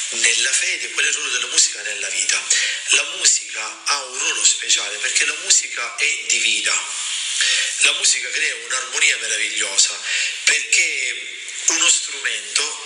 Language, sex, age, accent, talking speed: Italian, male, 40-59, native, 135 wpm